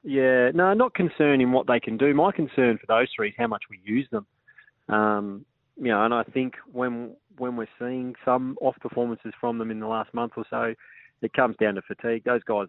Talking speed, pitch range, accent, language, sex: 220 wpm, 110-125 Hz, Australian, English, male